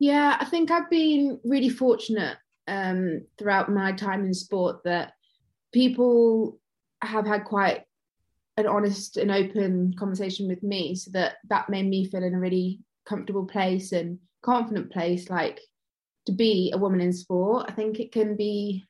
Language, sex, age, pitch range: English, female, 20-39, 185-220 Hz